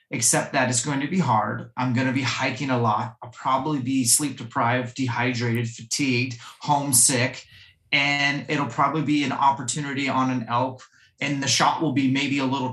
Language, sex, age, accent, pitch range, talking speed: English, male, 30-49, American, 120-140 Hz, 185 wpm